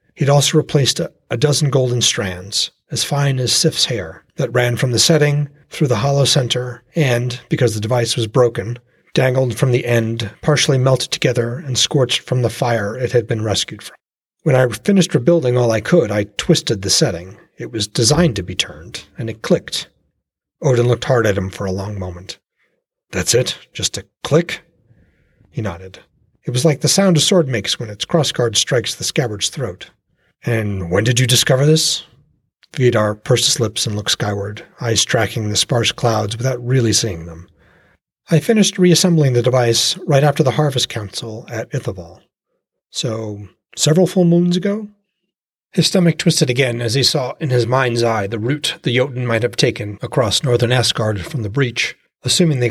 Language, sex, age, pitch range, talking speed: English, male, 40-59, 110-150 Hz, 185 wpm